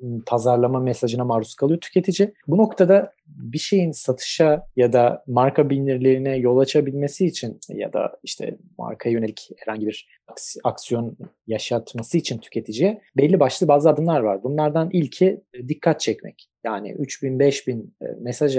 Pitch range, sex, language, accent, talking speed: 120-165 Hz, male, Turkish, native, 140 wpm